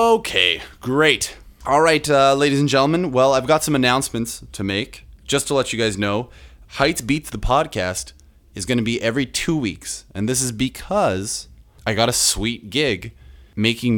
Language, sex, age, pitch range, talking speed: English, male, 20-39, 95-130 Hz, 175 wpm